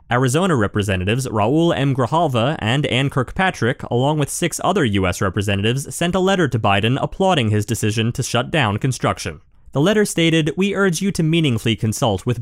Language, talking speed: English, 175 wpm